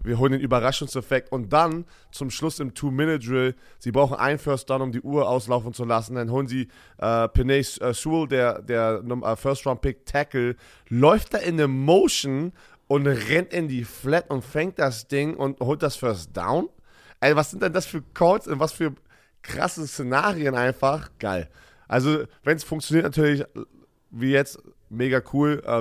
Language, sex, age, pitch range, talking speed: German, male, 30-49, 110-140 Hz, 175 wpm